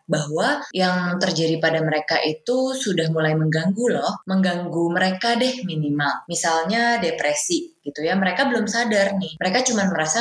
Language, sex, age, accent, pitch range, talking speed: Indonesian, female, 20-39, native, 160-210 Hz, 145 wpm